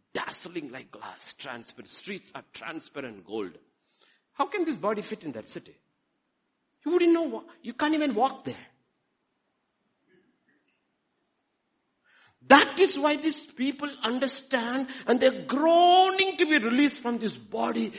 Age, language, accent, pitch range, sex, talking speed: 60-79, English, Indian, 210-300 Hz, male, 130 wpm